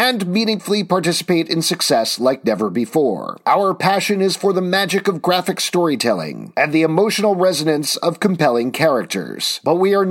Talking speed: 160 wpm